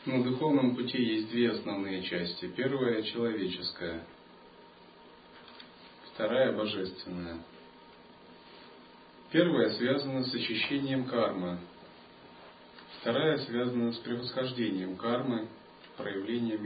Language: Russian